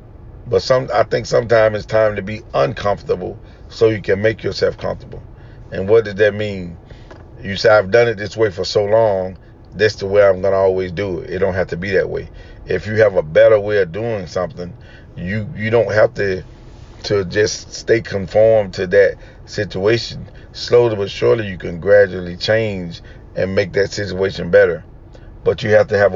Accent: American